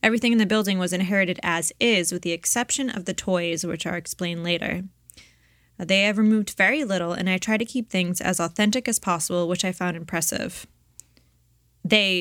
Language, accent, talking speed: English, American, 185 wpm